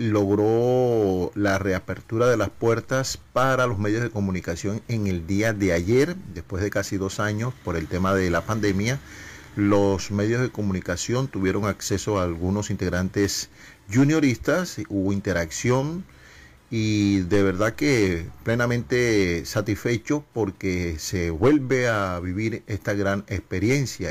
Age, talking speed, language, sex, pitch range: 40-59, 130 wpm, Spanish, male, 95-115 Hz